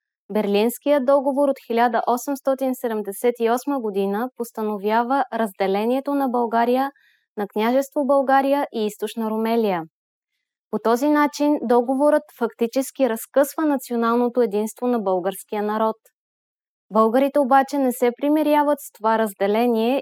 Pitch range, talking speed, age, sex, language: 215-265 Hz, 100 wpm, 20-39, female, English